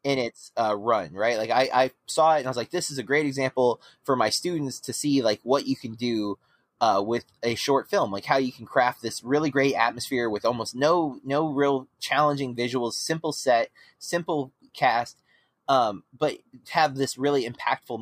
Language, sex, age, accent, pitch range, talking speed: English, male, 20-39, American, 125-170 Hz, 200 wpm